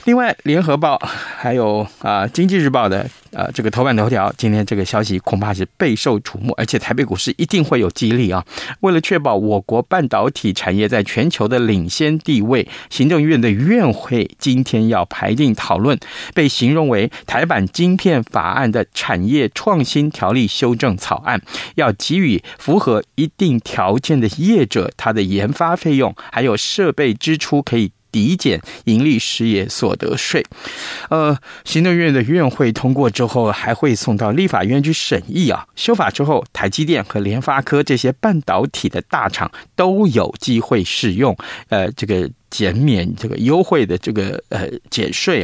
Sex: male